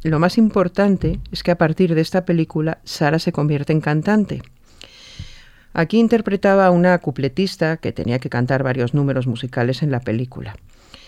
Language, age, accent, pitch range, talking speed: Spanish, 40-59, Spanish, 135-170 Hz, 160 wpm